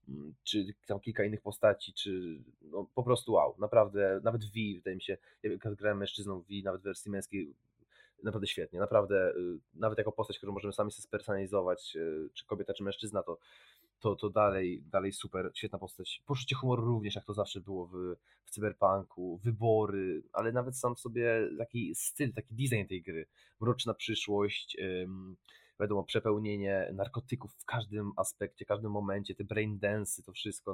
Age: 20-39